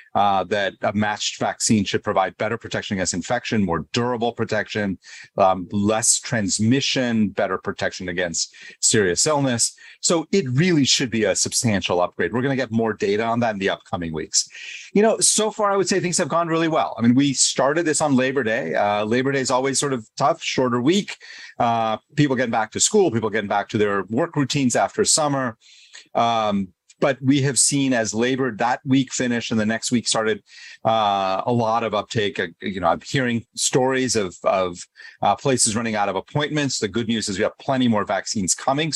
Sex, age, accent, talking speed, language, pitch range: male, 40-59, American, 200 wpm, English, 105-140 Hz